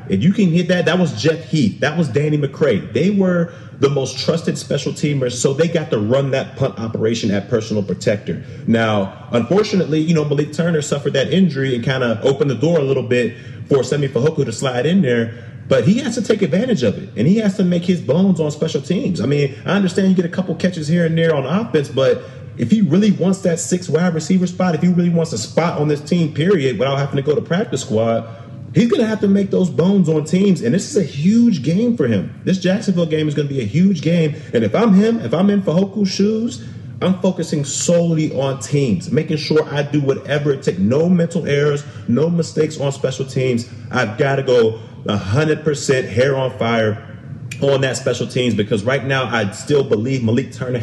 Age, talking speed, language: 30-49, 225 wpm, English